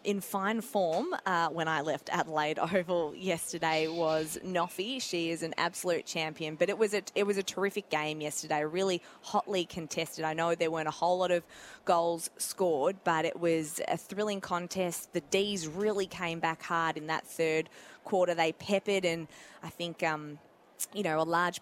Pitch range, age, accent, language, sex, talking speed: 155-175 Hz, 20-39, Australian, English, female, 180 wpm